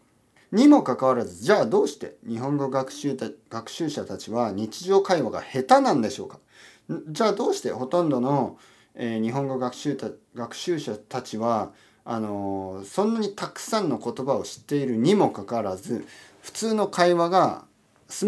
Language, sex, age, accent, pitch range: Japanese, male, 40-59, native, 115-180 Hz